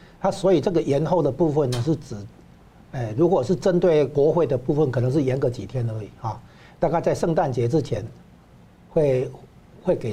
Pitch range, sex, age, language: 125-165 Hz, male, 60-79, Chinese